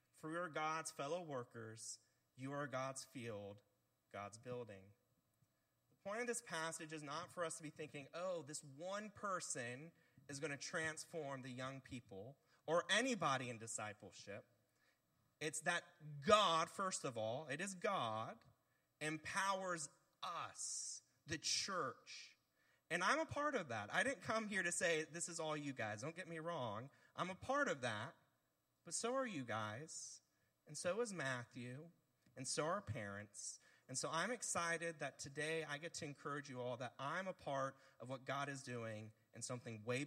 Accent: American